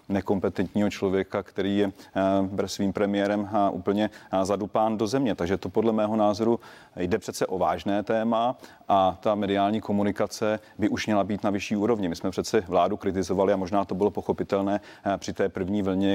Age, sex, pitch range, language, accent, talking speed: 30-49, male, 95-105 Hz, Czech, native, 170 wpm